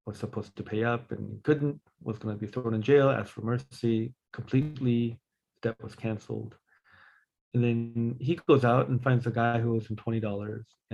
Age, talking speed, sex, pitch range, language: 40-59, 185 wpm, male, 110-130 Hz, English